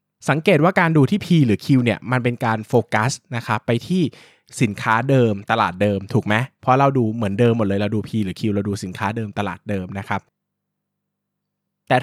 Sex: male